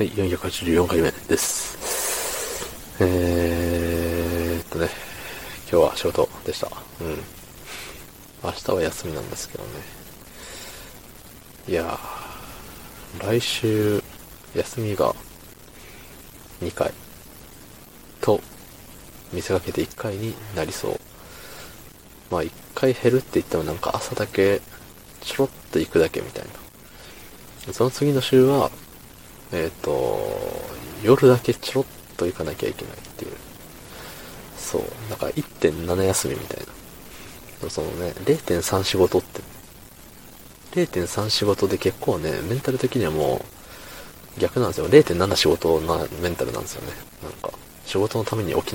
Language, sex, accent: Japanese, male, native